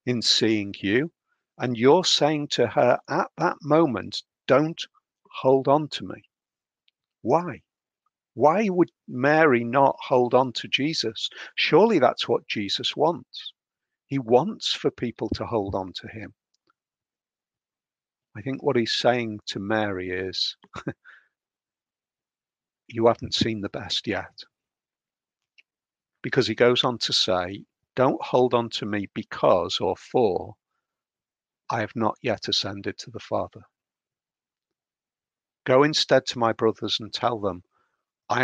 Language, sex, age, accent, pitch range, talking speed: English, male, 50-69, British, 110-130 Hz, 130 wpm